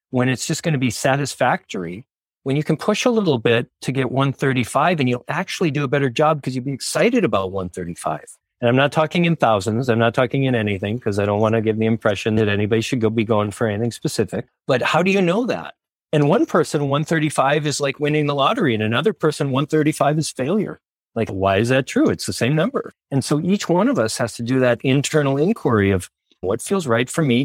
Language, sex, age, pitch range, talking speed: English, male, 40-59, 115-150 Hz, 235 wpm